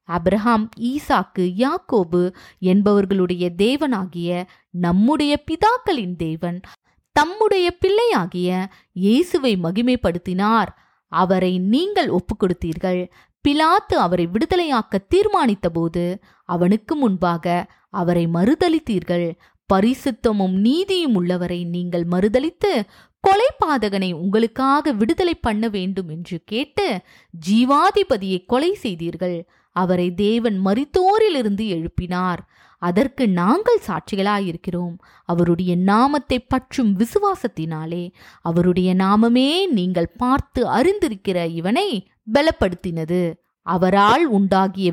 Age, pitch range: 20-39, 180-260 Hz